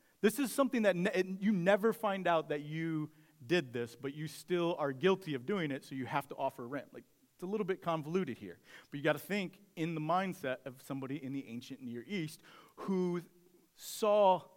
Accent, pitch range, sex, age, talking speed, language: American, 135-180 Hz, male, 40-59, 210 wpm, English